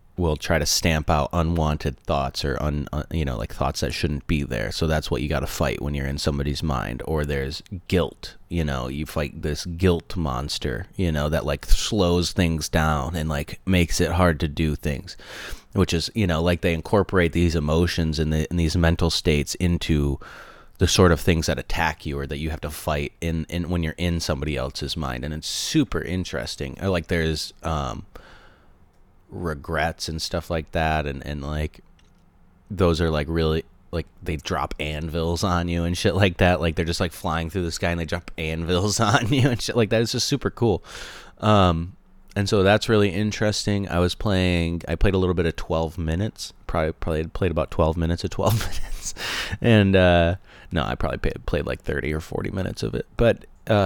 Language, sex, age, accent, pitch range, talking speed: English, male, 30-49, American, 80-95 Hz, 205 wpm